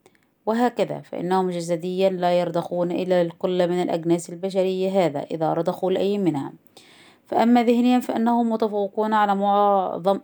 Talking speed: 125 wpm